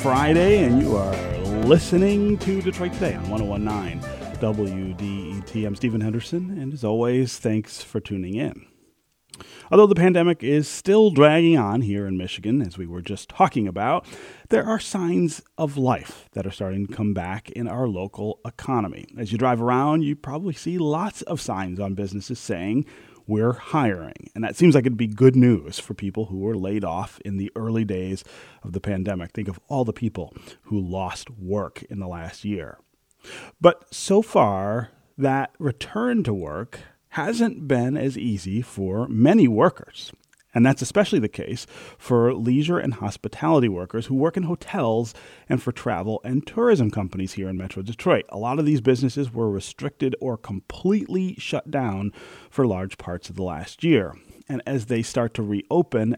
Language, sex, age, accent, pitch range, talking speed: English, male, 30-49, American, 100-140 Hz, 175 wpm